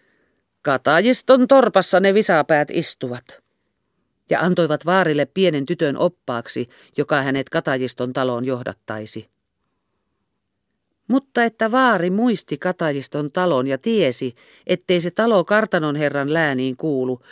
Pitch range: 130-200 Hz